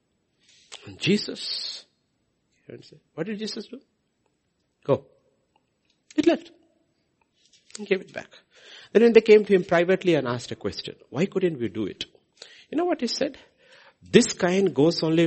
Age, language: 60-79, English